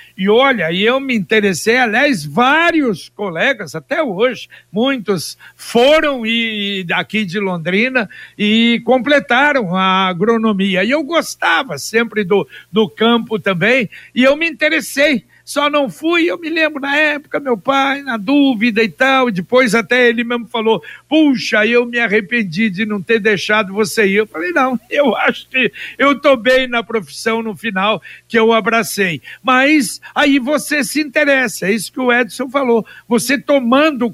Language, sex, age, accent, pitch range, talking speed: Portuguese, male, 60-79, Brazilian, 210-270 Hz, 160 wpm